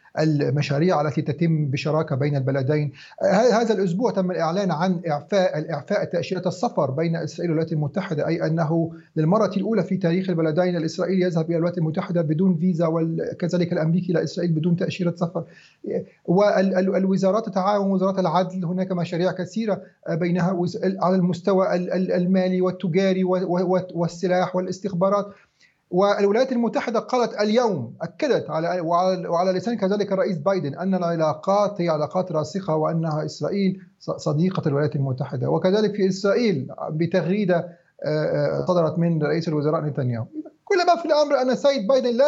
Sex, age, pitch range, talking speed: male, 40-59, 165-200 Hz, 130 wpm